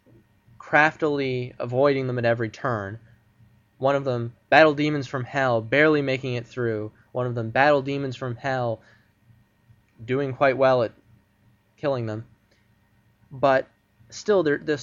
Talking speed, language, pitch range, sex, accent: 140 wpm, English, 110-130 Hz, male, American